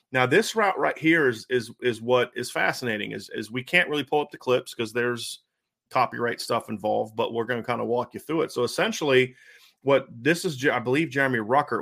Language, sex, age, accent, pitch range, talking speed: English, male, 30-49, American, 120-150 Hz, 225 wpm